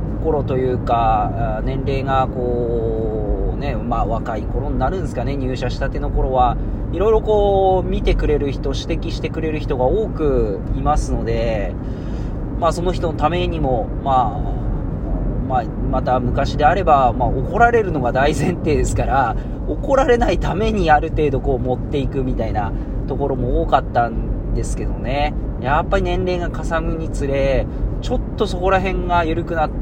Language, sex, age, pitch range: Japanese, male, 40-59, 115-145 Hz